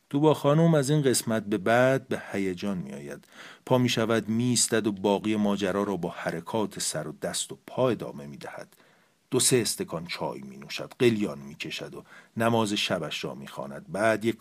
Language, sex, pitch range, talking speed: Persian, male, 100-130 Hz, 195 wpm